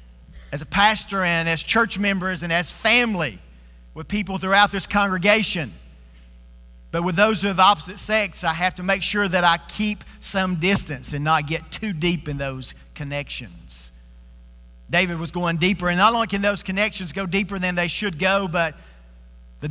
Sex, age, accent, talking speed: male, 40-59, American, 175 wpm